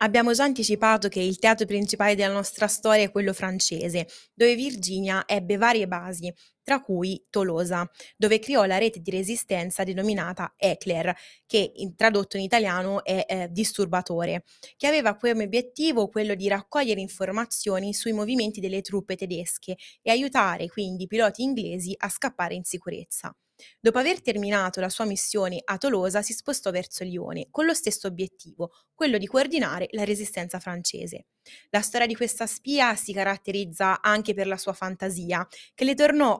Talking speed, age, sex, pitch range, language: 160 wpm, 20-39, female, 190-230 Hz, Italian